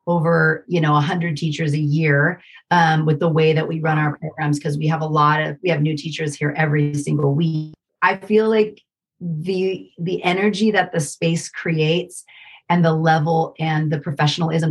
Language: English